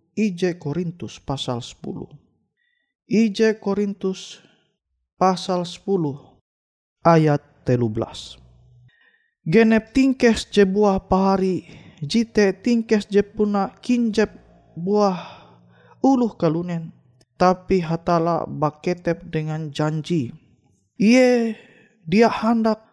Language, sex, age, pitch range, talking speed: Indonesian, male, 20-39, 165-215 Hz, 80 wpm